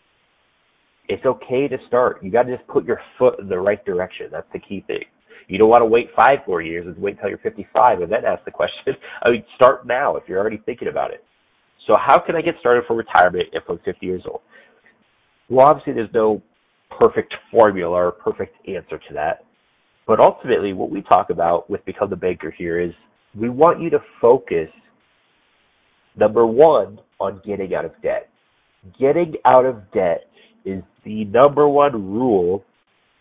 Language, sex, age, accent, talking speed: English, male, 30-49, American, 190 wpm